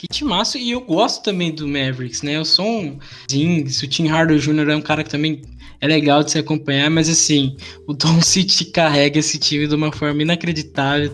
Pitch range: 140-175 Hz